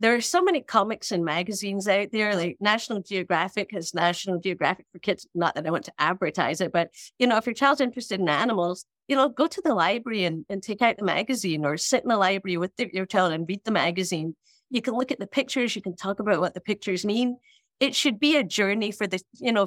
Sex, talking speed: female, 245 wpm